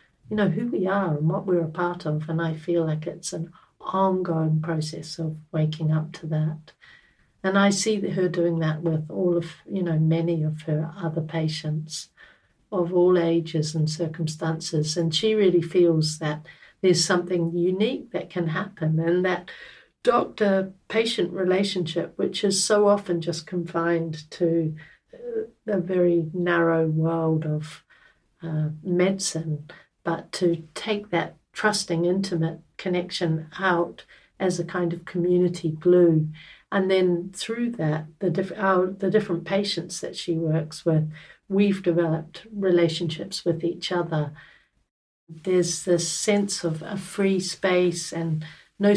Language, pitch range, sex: English, 160-190 Hz, female